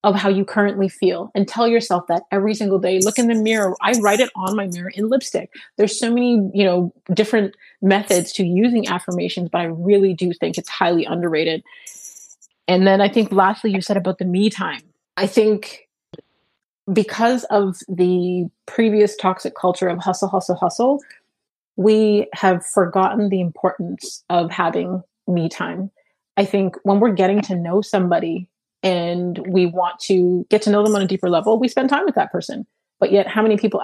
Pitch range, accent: 185-215 Hz, American